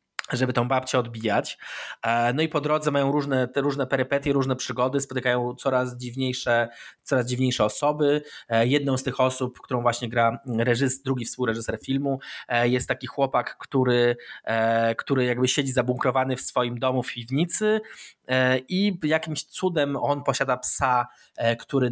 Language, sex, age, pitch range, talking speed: Polish, male, 20-39, 125-150 Hz, 135 wpm